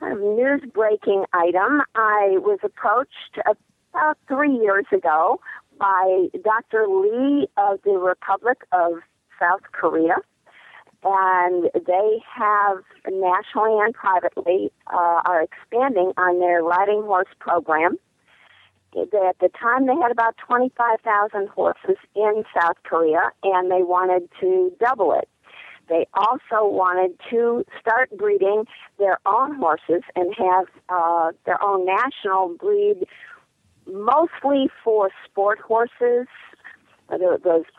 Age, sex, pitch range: 50-69, female, 180-225 Hz